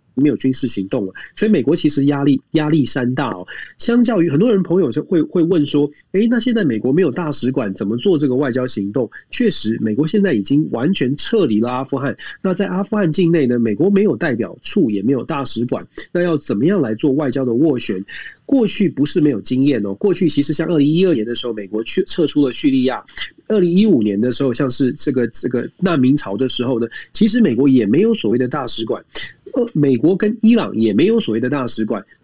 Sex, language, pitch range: male, Chinese, 125-175 Hz